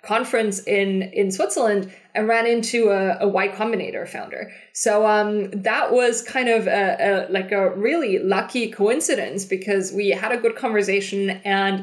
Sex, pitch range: female, 190-220 Hz